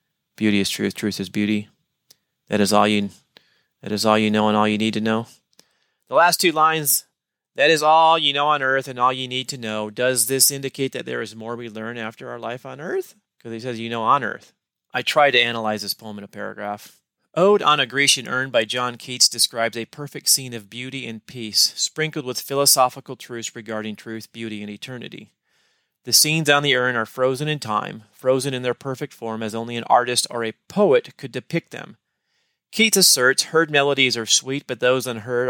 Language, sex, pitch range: English, male, 115-140 Hz